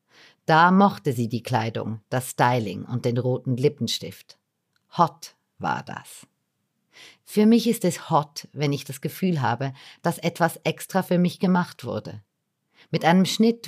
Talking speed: 150 wpm